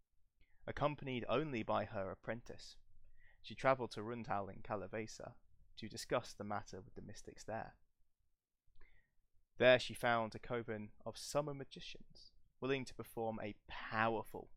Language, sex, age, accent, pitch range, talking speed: English, male, 20-39, British, 95-120 Hz, 130 wpm